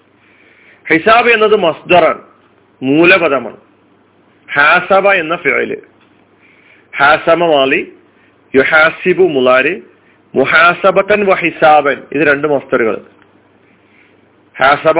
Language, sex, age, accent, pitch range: Malayalam, male, 40-59, native, 155-205 Hz